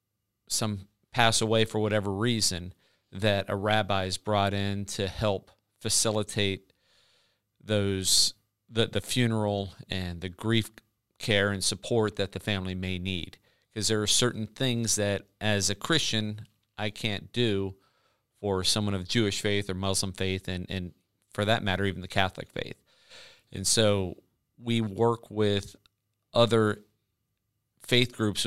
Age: 40-59